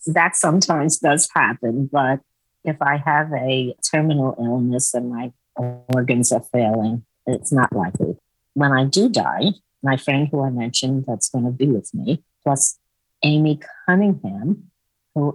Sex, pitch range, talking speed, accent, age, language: female, 120-150 Hz, 150 wpm, American, 50-69, English